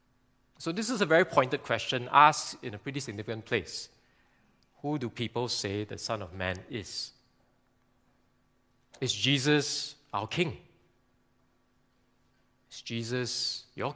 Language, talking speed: English, 125 wpm